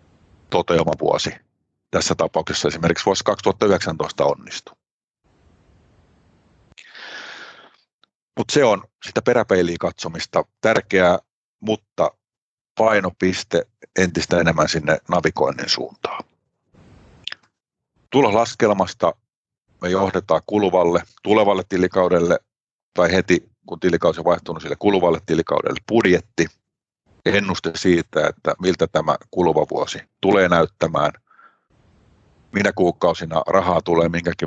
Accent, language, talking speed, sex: native, Finnish, 90 wpm, male